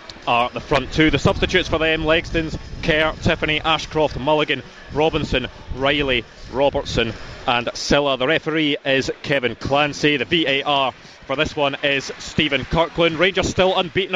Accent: British